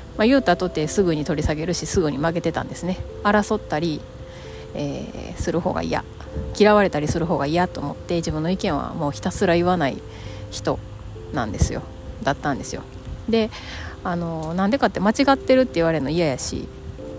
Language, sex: Japanese, female